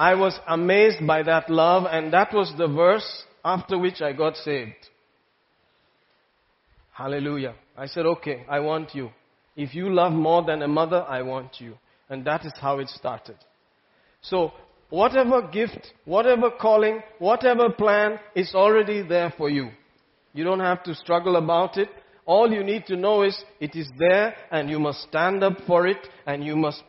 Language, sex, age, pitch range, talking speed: English, male, 40-59, 145-190 Hz, 170 wpm